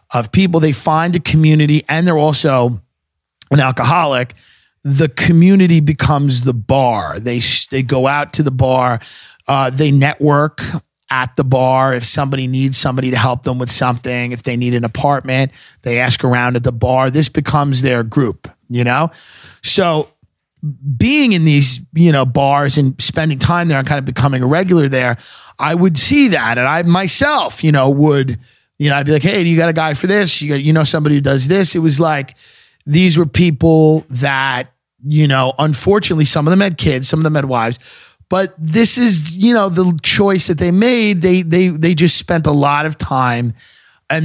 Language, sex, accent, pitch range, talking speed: English, male, American, 130-165 Hz, 195 wpm